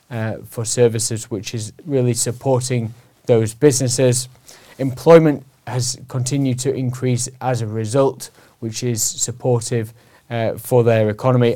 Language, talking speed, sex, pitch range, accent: English, 125 wpm, male, 120-140 Hz, British